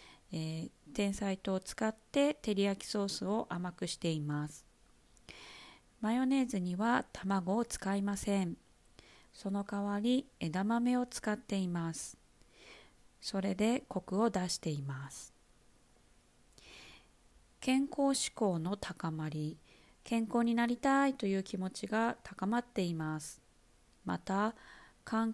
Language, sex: Japanese, female